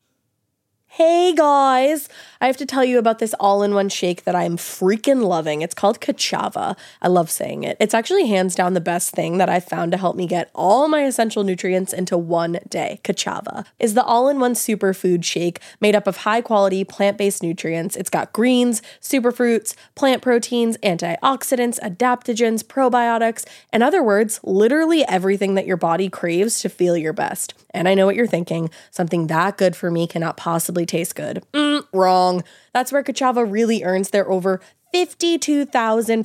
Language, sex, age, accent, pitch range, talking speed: English, female, 20-39, American, 180-240 Hz, 180 wpm